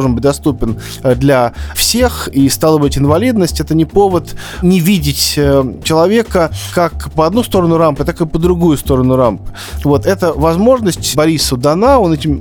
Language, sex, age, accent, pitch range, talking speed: Russian, male, 20-39, native, 130-170 Hz, 155 wpm